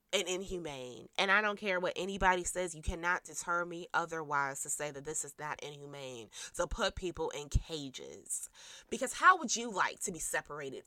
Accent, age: American, 20-39